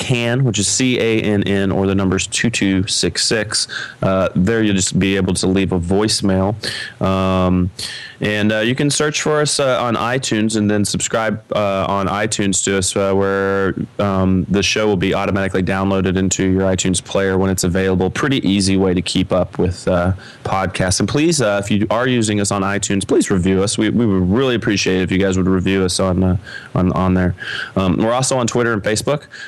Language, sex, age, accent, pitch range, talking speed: English, male, 20-39, American, 95-110 Hz, 200 wpm